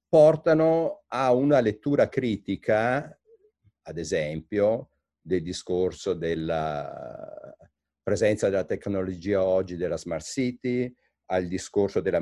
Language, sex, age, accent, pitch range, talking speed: Italian, male, 50-69, native, 90-120 Hz, 100 wpm